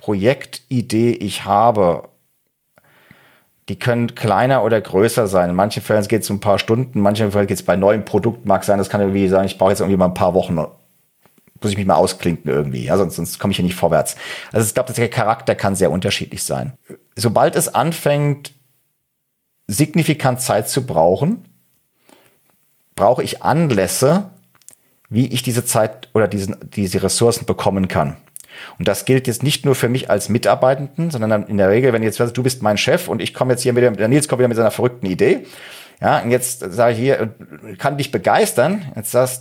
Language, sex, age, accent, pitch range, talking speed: German, male, 40-59, German, 100-125 Hz, 190 wpm